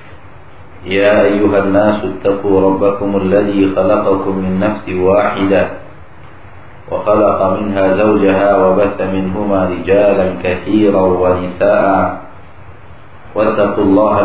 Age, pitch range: 50-69, 95-105 Hz